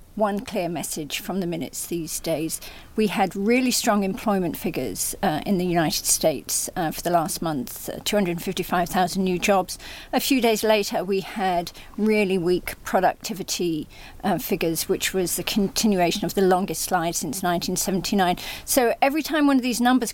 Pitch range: 180-215 Hz